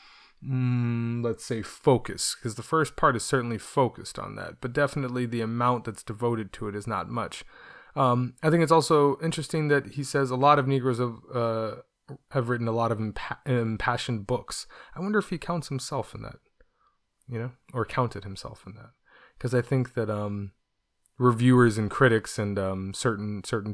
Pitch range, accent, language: 105-130 Hz, American, English